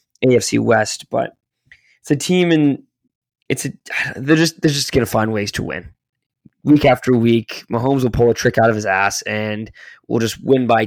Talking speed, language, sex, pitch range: 195 wpm, English, male, 110-125 Hz